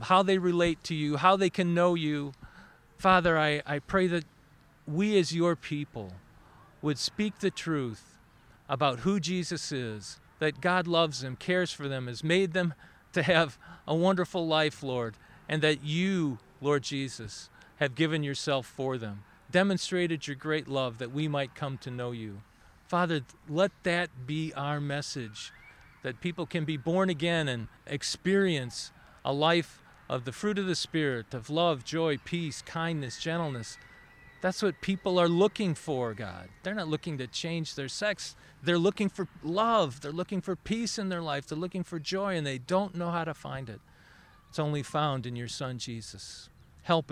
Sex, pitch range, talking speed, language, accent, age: male, 135-175 Hz, 175 wpm, English, American, 40-59